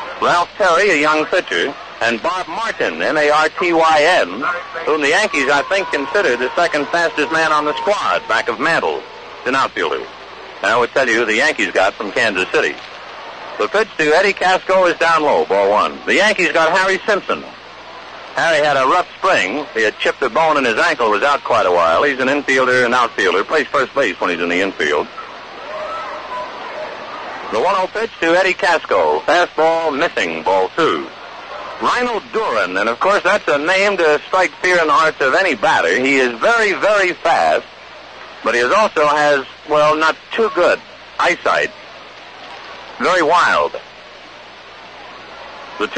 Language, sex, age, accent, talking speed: English, male, 60-79, American, 170 wpm